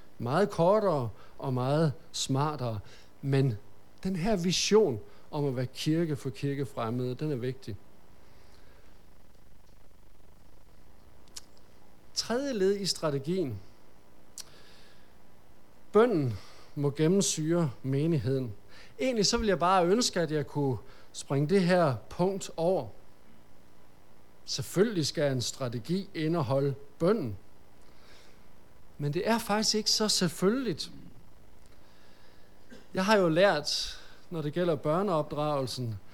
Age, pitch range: 50-69, 120-185 Hz